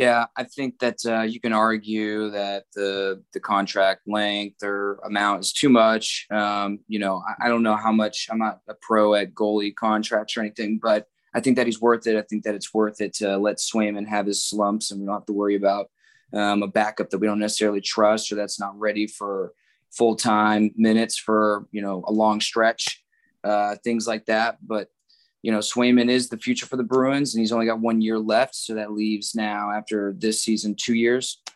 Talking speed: 220 wpm